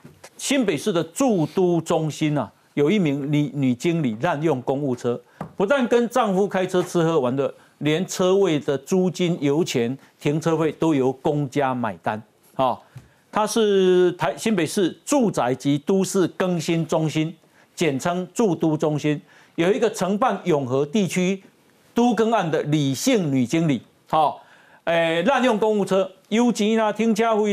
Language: Chinese